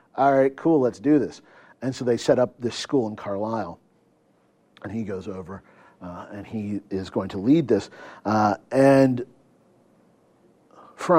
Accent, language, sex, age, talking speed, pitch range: American, English, male, 50-69, 160 wpm, 110-165 Hz